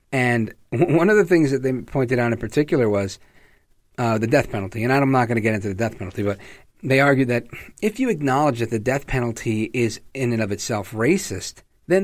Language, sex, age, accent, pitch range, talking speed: English, male, 40-59, American, 120-190 Hz, 220 wpm